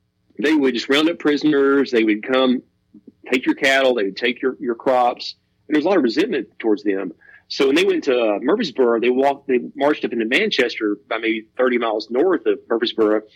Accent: American